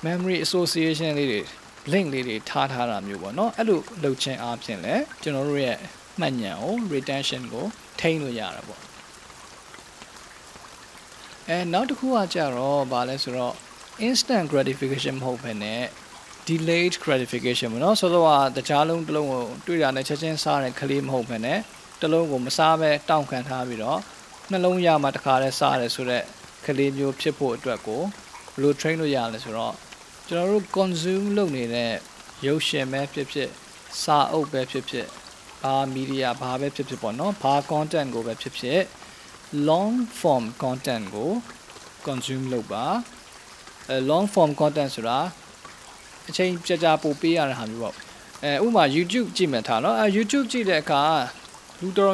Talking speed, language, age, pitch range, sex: 80 wpm, English, 20-39, 130-175 Hz, male